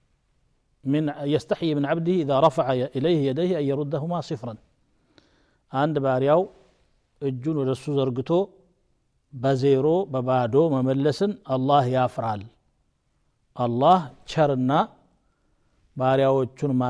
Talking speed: 90 wpm